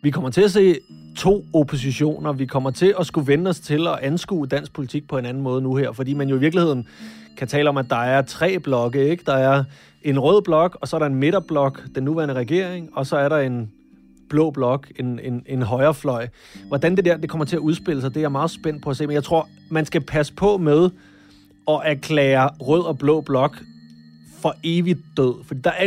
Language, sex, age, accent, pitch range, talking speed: Danish, male, 30-49, native, 130-160 Hz, 235 wpm